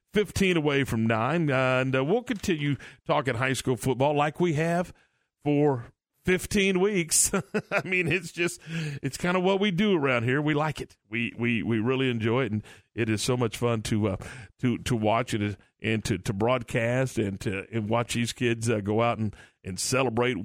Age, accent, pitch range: 40-59, American, 120-160 Hz